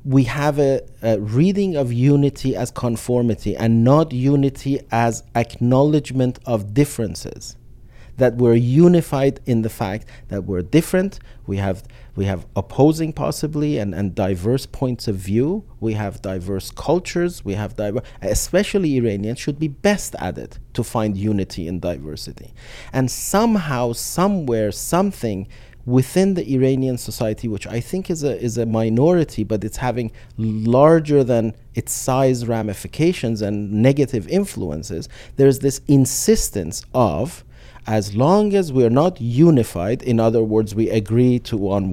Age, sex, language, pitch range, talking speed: 40-59, male, English, 110-150 Hz, 145 wpm